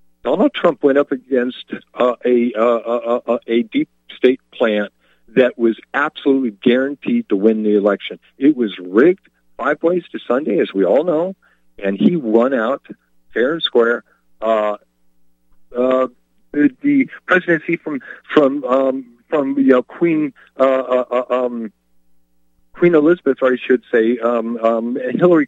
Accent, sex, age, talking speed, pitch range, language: American, male, 50-69, 150 wpm, 105-150 Hz, English